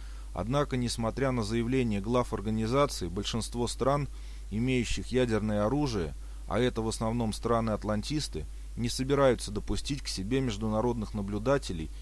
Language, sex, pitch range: Russian, male, 100-125 Hz